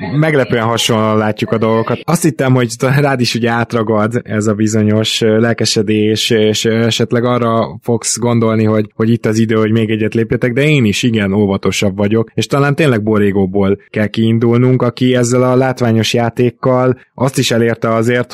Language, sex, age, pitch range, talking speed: Hungarian, male, 20-39, 110-130 Hz, 165 wpm